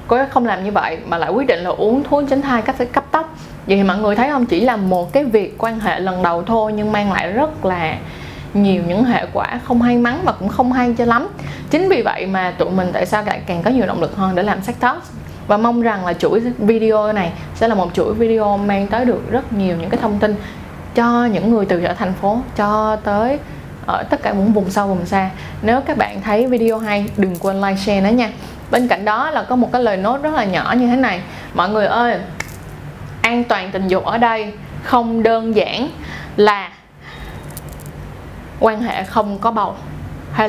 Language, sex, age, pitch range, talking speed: Vietnamese, female, 20-39, 190-235 Hz, 230 wpm